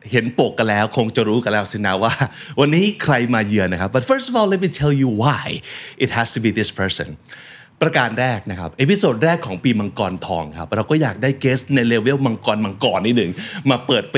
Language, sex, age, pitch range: Thai, male, 30-49, 105-145 Hz